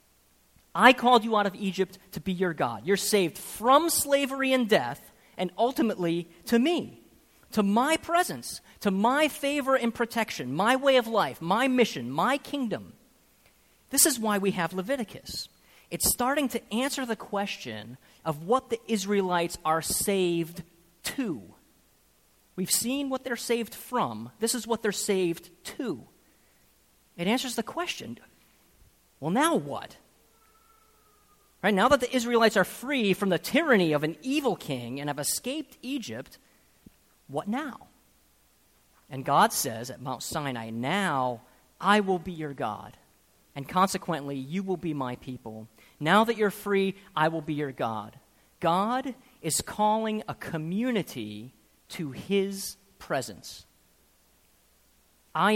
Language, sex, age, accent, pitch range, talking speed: English, male, 40-59, American, 150-235 Hz, 140 wpm